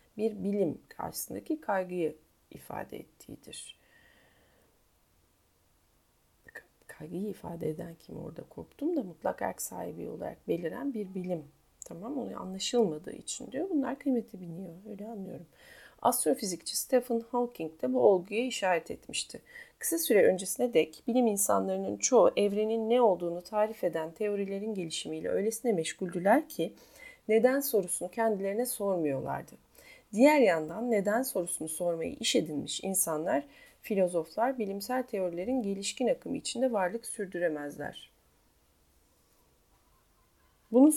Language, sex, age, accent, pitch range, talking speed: Turkish, female, 40-59, native, 170-245 Hz, 110 wpm